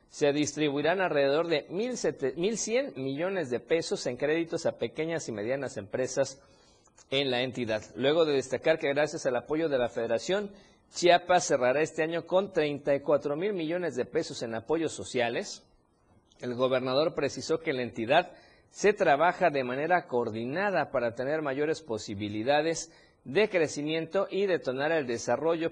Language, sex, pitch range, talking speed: Spanish, male, 125-170 Hz, 145 wpm